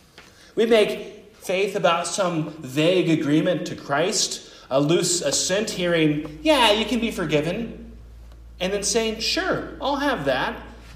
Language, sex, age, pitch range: English, male, 40-59, 130-195 Hz